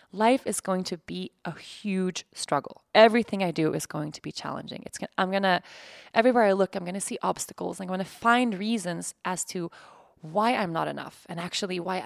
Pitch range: 175-220 Hz